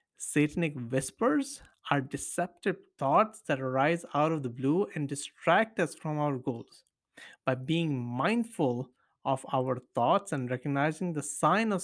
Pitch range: 130-170 Hz